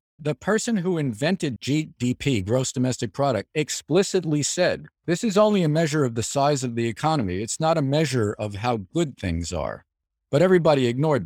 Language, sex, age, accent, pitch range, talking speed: English, male, 50-69, American, 95-150 Hz, 175 wpm